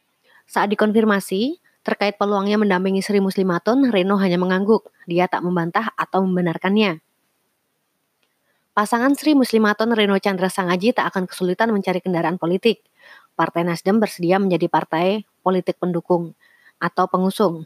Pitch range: 175-210 Hz